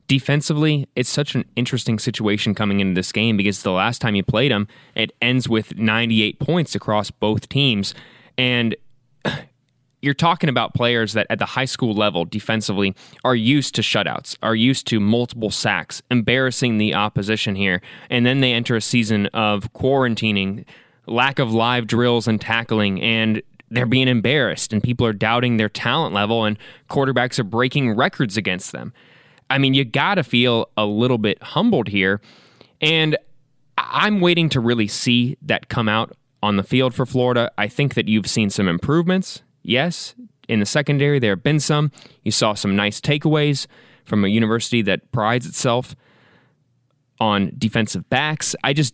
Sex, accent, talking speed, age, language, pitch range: male, American, 170 wpm, 20-39, English, 110-140 Hz